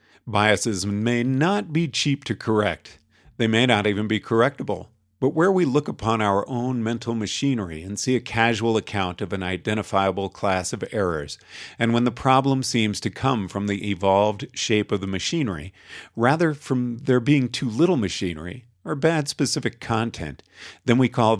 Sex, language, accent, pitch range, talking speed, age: male, English, American, 100-130 Hz, 170 wpm, 50-69